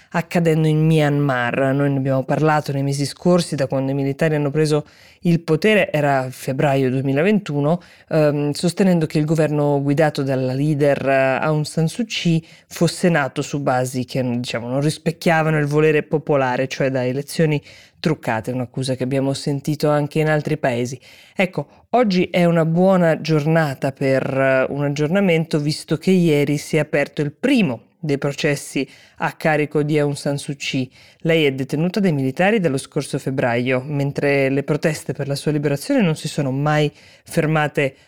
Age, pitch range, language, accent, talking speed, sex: 20-39, 140-165 Hz, Italian, native, 160 wpm, female